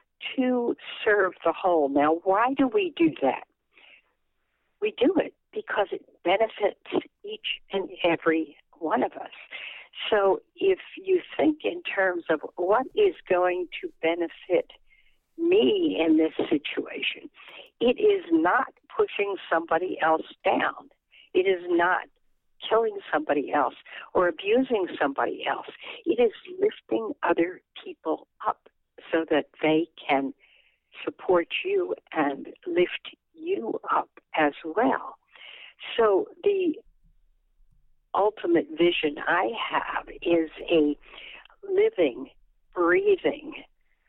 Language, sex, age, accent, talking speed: English, female, 60-79, American, 115 wpm